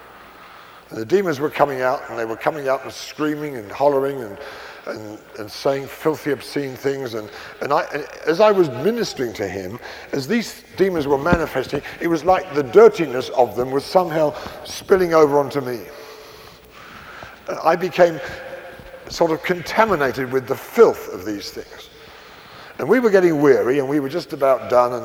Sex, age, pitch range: male, 50-69, 130-180 Hz